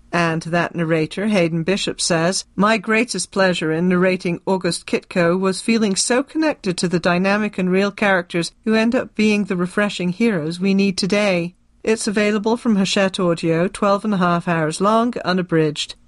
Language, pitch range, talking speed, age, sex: English, 175-210 Hz, 170 wpm, 40-59, female